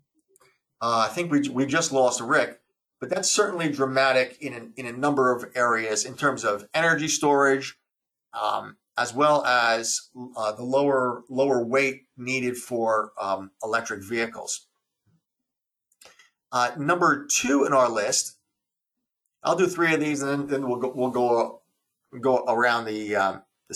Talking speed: 155 wpm